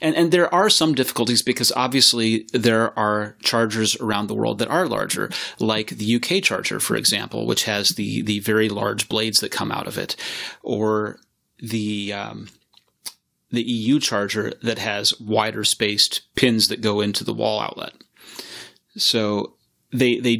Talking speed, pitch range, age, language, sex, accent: 160 wpm, 105-120 Hz, 30-49, English, male, American